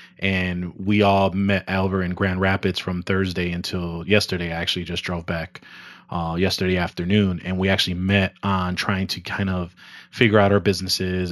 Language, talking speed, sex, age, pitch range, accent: English, 175 wpm, male, 30-49, 90-100 Hz, American